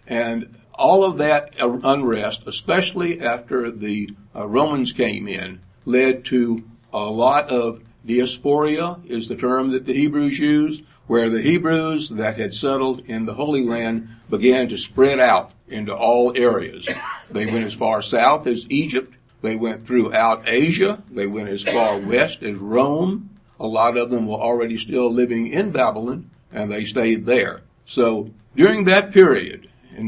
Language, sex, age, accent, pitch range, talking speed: English, male, 60-79, American, 115-150 Hz, 160 wpm